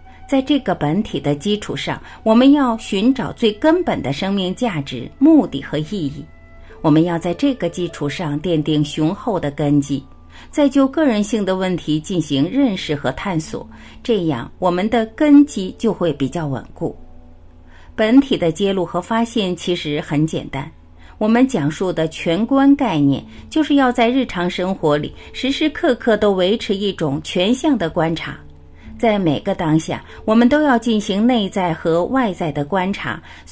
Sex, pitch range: female, 150-235 Hz